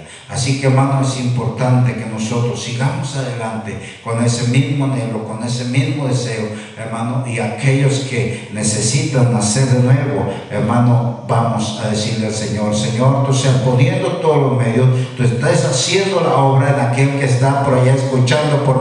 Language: Spanish